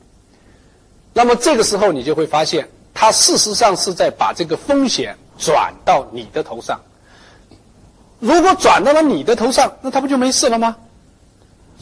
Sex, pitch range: male, 150-255 Hz